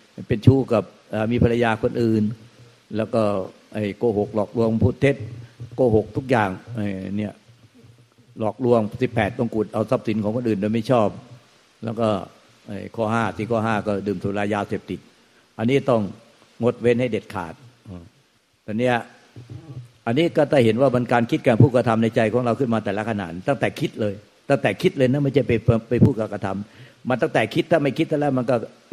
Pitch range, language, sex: 110-135 Hz, Thai, male